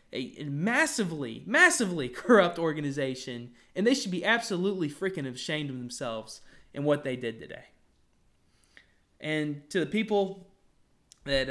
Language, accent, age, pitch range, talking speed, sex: English, American, 20-39, 135-190 Hz, 125 wpm, male